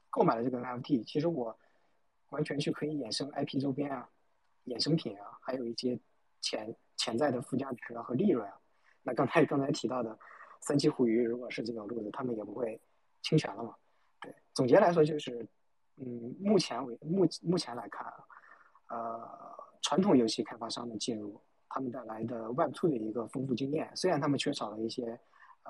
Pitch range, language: 115-150 Hz, Chinese